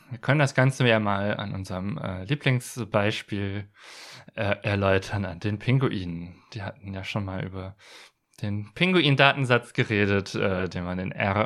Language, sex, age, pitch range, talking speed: German, male, 20-39, 100-130 Hz, 135 wpm